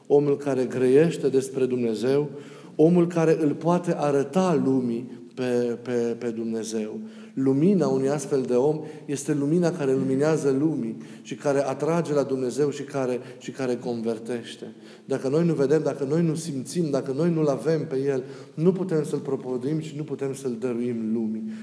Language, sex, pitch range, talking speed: Romanian, male, 130-165 Hz, 160 wpm